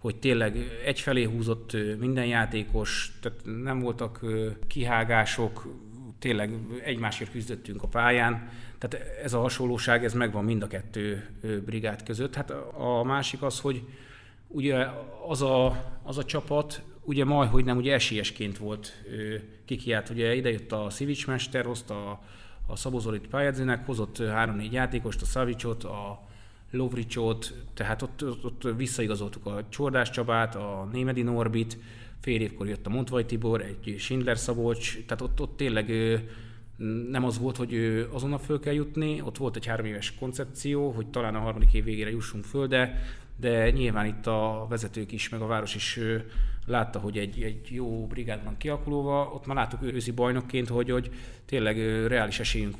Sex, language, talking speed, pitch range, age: male, Hungarian, 150 wpm, 110-125 Hz, 30-49